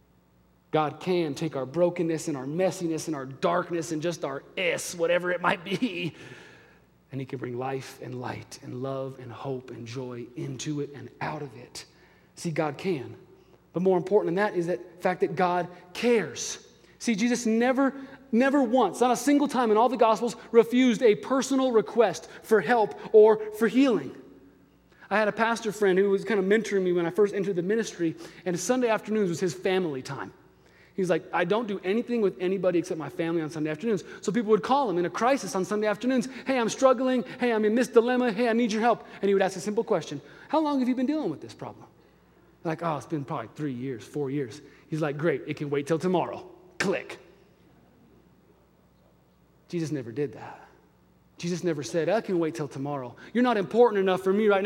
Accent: American